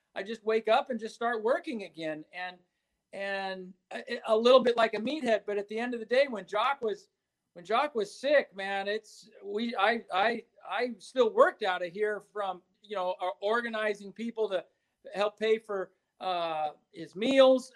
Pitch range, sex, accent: 195-260 Hz, male, American